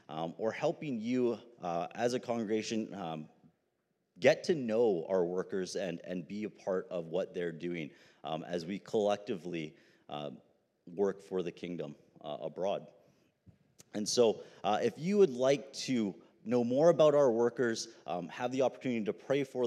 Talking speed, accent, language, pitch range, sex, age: 165 wpm, American, English, 100-130 Hz, male, 30-49